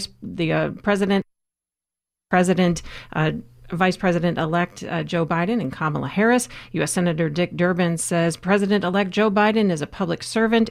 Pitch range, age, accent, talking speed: 165-205 Hz, 40-59, American, 135 wpm